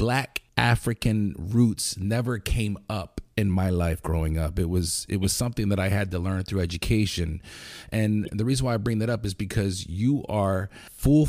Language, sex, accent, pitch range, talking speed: English, male, American, 95-115 Hz, 190 wpm